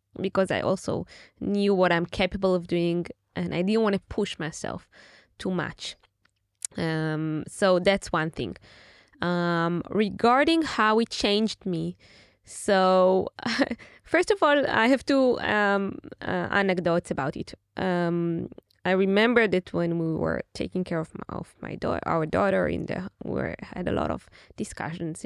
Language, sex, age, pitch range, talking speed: Hebrew, female, 20-39, 170-220 Hz, 165 wpm